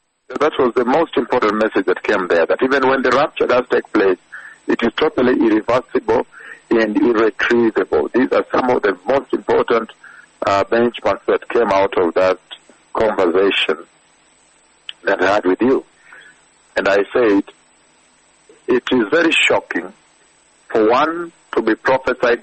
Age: 60-79